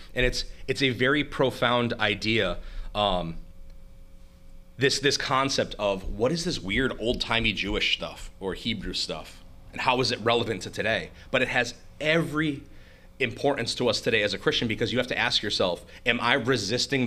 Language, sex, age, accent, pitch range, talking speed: English, male, 30-49, American, 95-125 Hz, 170 wpm